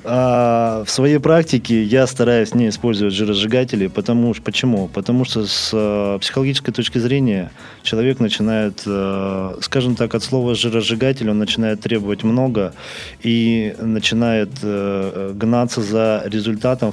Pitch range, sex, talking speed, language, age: 105-125 Hz, male, 115 wpm, Russian, 20-39